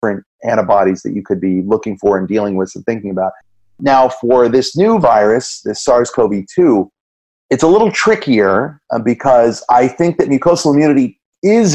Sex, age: male, 30-49